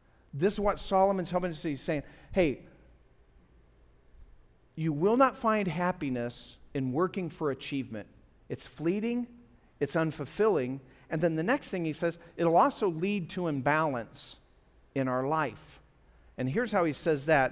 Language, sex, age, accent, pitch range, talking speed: English, male, 50-69, American, 150-215 Hz, 145 wpm